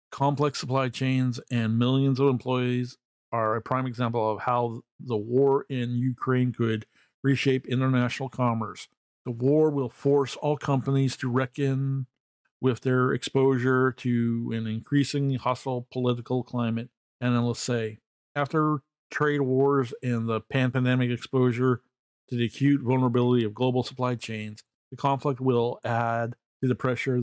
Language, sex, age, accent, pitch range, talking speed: English, male, 50-69, American, 115-130 Hz, 140 wpm